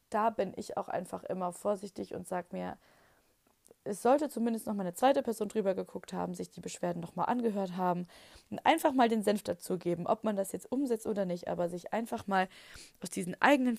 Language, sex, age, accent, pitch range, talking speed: German, female, 20-39, German, 180-220 Hz, 215 wpm